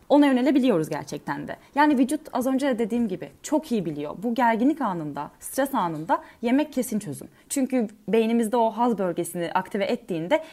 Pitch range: 200-285 Hz